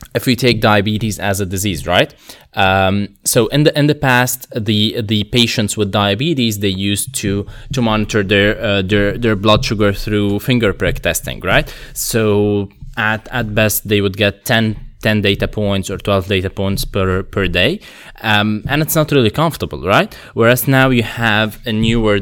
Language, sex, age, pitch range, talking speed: Slovak, male, 20-39, 105-125 Hz, 180 wpm